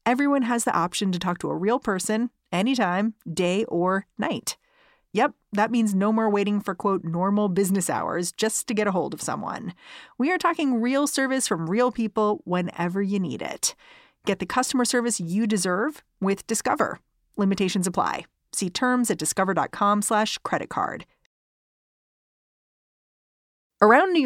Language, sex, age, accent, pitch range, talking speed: English, female, 30-49, American, 180-225 Hz, 155 wpm